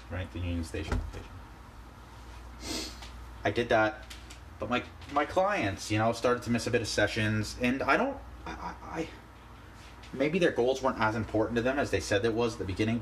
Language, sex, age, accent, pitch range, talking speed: English, male, 30-49, American, 90-115 Hz, 200 wpm